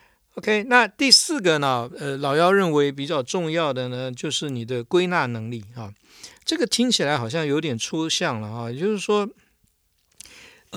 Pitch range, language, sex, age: 130-190 Hz, Chinese, male, 60-79